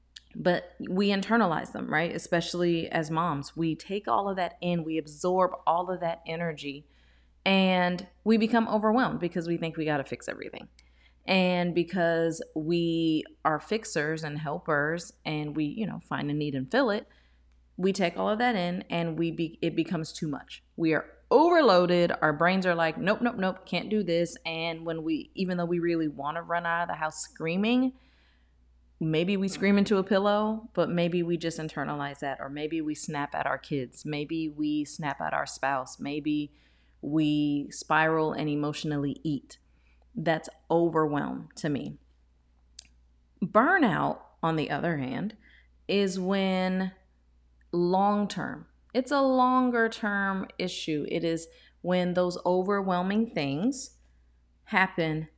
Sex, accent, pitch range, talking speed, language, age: female, American, 145-185 Hz, 155 wpm, English, 30-49